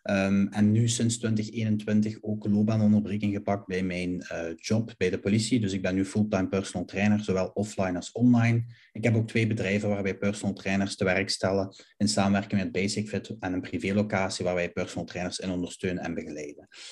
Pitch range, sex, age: 95-105 Hz, male, 30-49